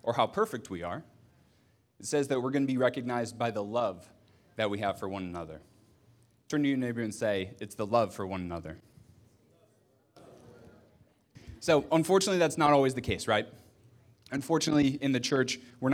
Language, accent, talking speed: English, American, 175 wpm